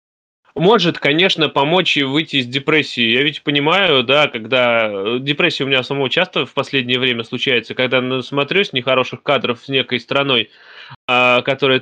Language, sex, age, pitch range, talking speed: Russian, male, 20-39, 125-150 Hz, 145 wpm